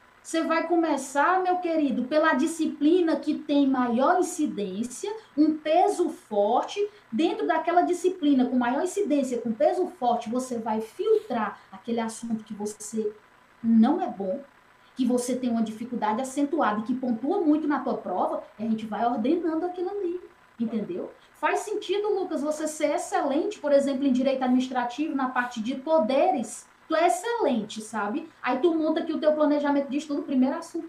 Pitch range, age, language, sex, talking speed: 255-340 Hz, 20-39, Portuguese, female, 165 wpm